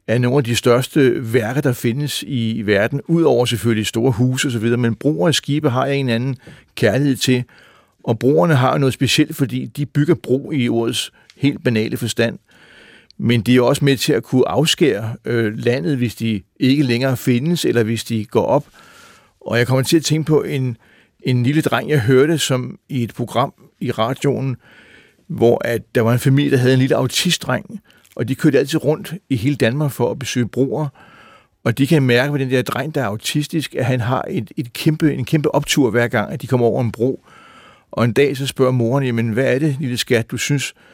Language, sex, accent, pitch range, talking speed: Danish, male, native, 120-140 Hz, 210 wpm